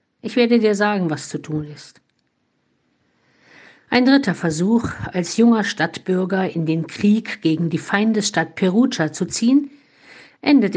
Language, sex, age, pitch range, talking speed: German, female, 50-69, 160-215 Hz, 135 wpm